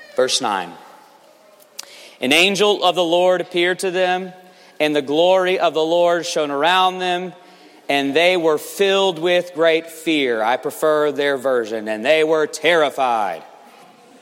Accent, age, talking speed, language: American, 40-59, 145 wpm, English